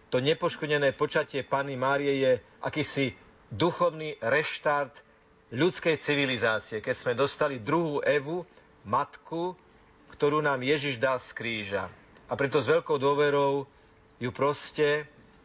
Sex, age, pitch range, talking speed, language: male, 40-59, 120-140 Hz, 115 wpm, Slovak